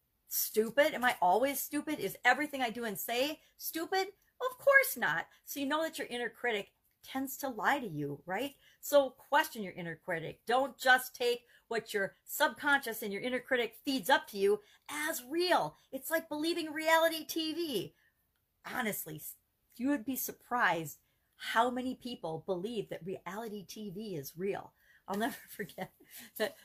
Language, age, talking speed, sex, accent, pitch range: English, 40-59, 160 wpm, female, American, 165-250 Hz